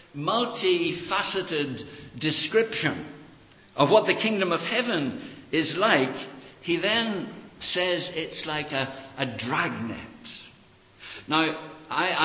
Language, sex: English, male